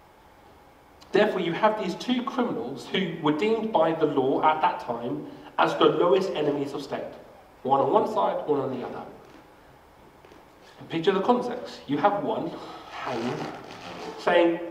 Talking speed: 150 wpm